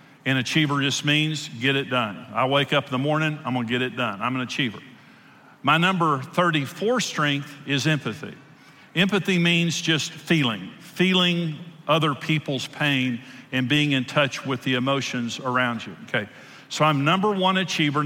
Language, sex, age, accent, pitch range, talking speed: English, male, 50-69, American, 140-175 Hz, 165 wpm